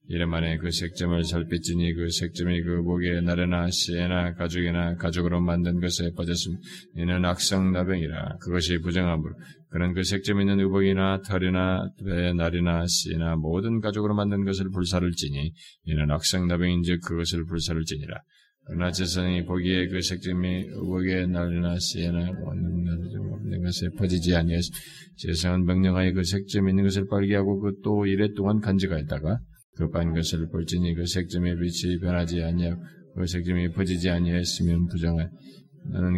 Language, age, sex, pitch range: Korean, 20-39, male, 85-95 Hz